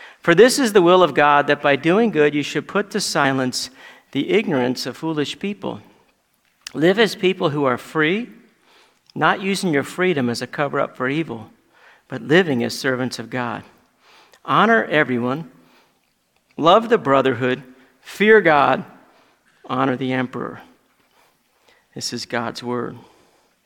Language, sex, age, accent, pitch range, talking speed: English, male, 50-69, American, 135-175 Hz, 140 wpm